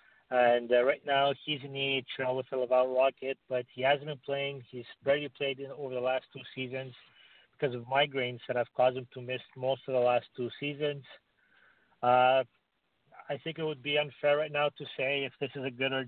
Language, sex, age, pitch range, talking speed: English, male, 40-59, 125-140 Hz, 215 wpm